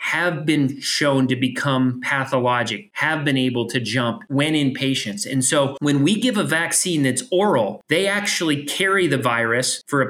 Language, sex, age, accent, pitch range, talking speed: English, male, 30-49, American, 130-155 Hz, 180 wpm